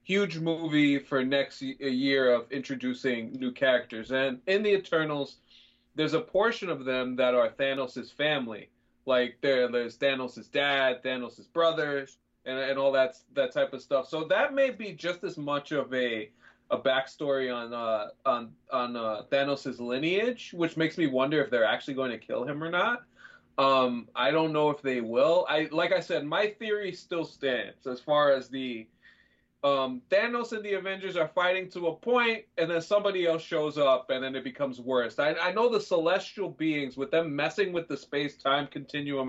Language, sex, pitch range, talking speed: English, male, 130-165 Hz, 180 wpm